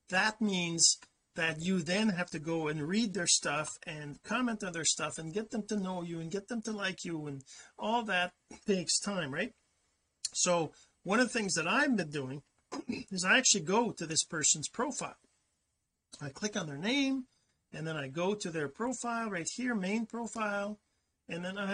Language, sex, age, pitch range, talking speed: English, male, 40-59, 165-230 Hz, 195 wpm